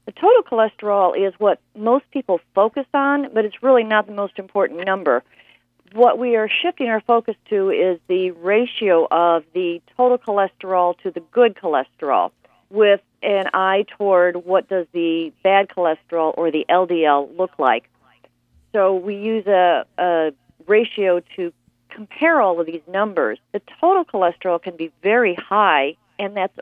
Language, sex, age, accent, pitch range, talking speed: English, female, 50-69, American, 160-205 Hz, 160 wpm